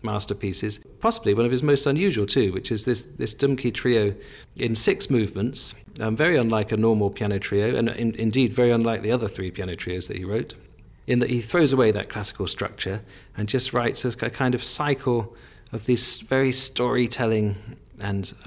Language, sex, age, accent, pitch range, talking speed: English, male, 40-59, British, 100-120 Hz, 190 wpm